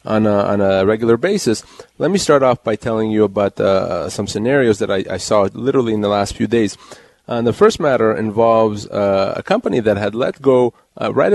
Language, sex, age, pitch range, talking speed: English, male, 30-49, 110-140 Hz, 215 wpm